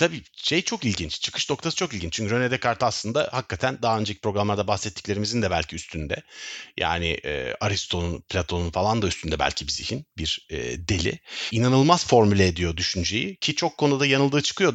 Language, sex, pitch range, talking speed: Turkish, male, 100-155 Hz, 170 wpm